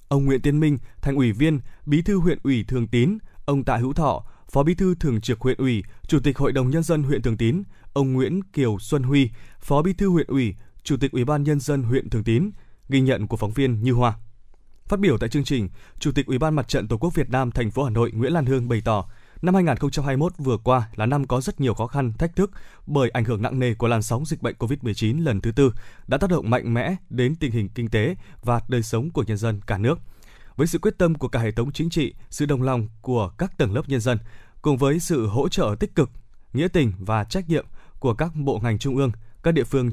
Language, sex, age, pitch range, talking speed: Vietnamese, male, 20-39, 115-150 Hz, 250 wpm